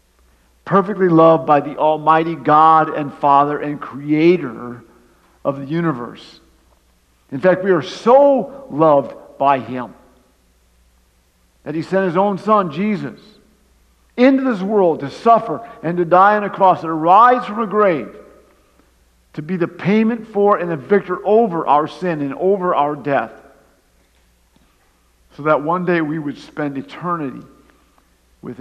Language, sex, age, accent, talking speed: English, male, 50-69, American, 145 wpm